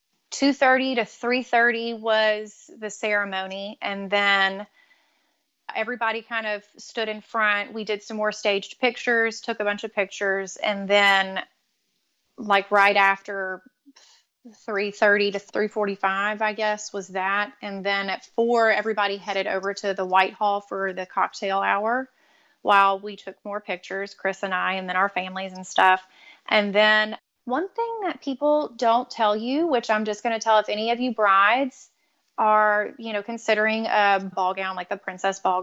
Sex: female